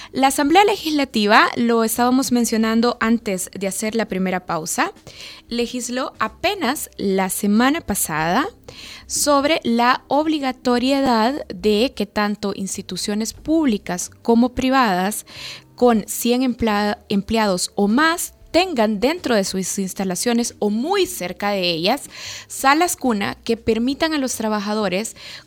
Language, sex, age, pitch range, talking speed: Spanish, female, 20-39, 210-275 Hz, 115 wpm